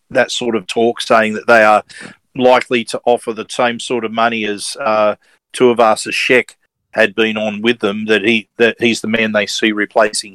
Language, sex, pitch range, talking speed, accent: English, male, 115-130 Hz, 195 wpm, Australian